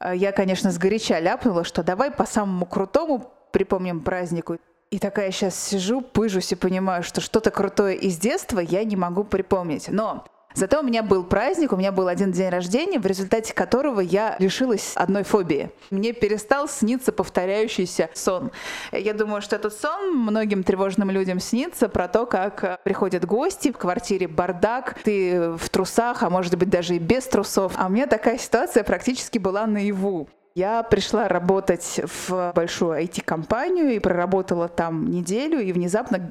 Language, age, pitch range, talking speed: Russian, 20-39, 185-235 Hz, 165 wpm